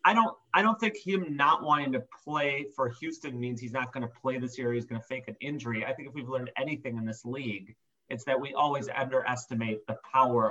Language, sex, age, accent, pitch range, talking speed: English, male, 30-49, American, 120-155 Hz, 240 wpm